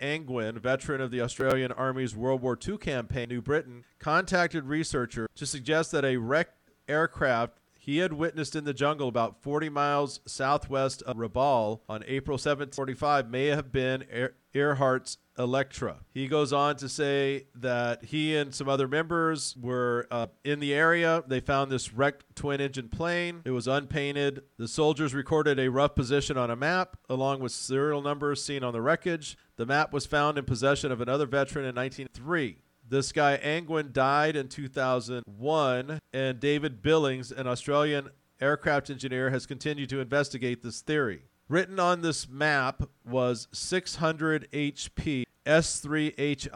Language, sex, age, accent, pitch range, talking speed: English, male, 40-59, American, 130-150 Hz, 155 wpm